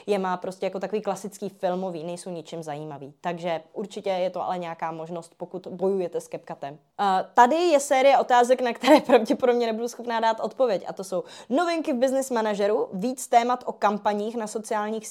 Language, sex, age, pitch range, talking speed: Czech, female, 20-39, 200-245 Hz, 180 wpm